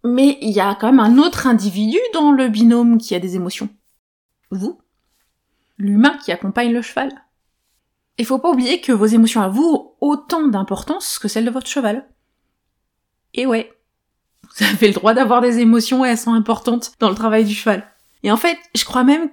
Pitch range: 210-255 Hz